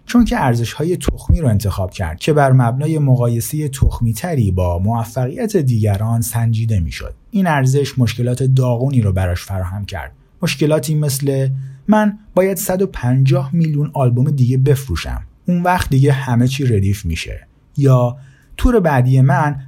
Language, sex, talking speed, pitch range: Persian, male, 145 wpm, 105-145 Hz